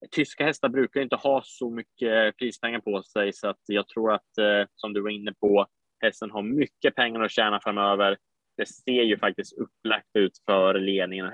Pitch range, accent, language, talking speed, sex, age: 95-110 Hz, Norwegian, Swedish, 185 wpm, male, 20-39